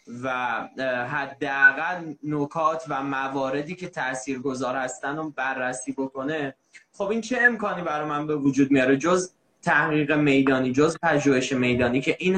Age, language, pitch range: 20-39, Persian, 135-185 Hz